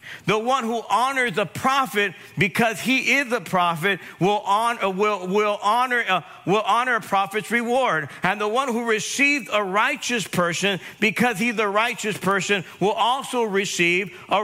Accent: American